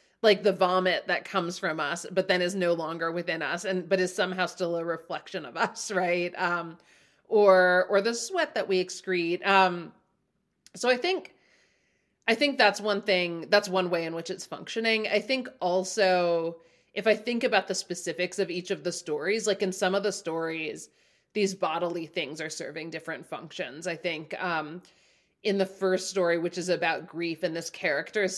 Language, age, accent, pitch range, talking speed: English, 30-49, American, 170-195 Hz, 190 wpm